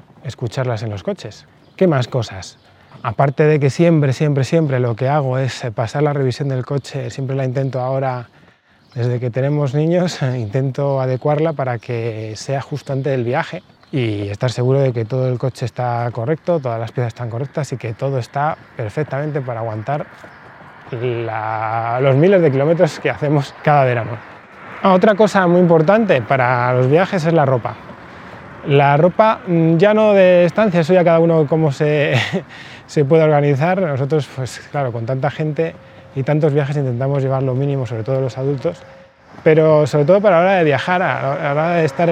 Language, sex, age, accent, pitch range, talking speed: Spanish, male, 20-39, Spanish, 125-165 Hz, 180 wpm